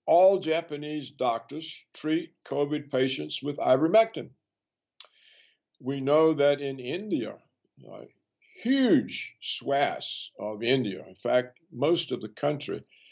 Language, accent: English, American